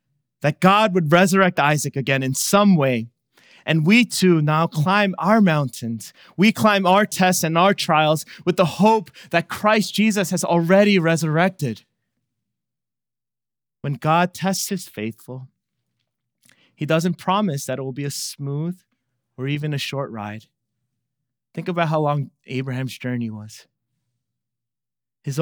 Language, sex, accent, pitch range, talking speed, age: English, male, American, 125-175 Hz, 140 wpm, 30-49